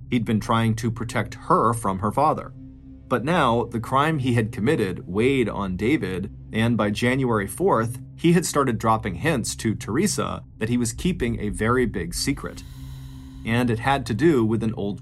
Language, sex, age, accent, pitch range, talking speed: English, male, 30-49, American, 105-130 Hz, 185 wpm